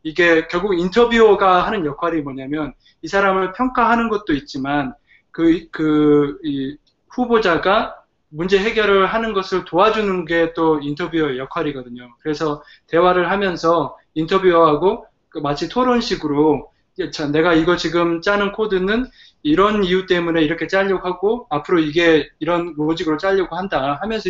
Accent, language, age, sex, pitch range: native, Korean, 20-39, male, 150-190 Hz